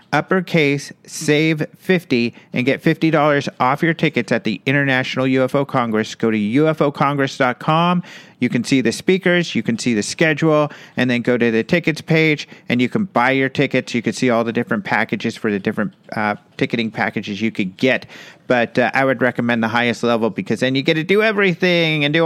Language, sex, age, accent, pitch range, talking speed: English, male, 40-59, American, 125-175 Hz, 195 wpm